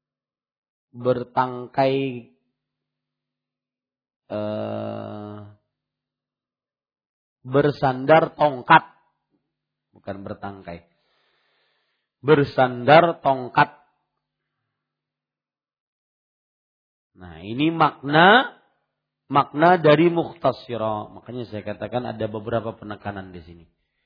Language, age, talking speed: Malay, 40-59, 55 wpm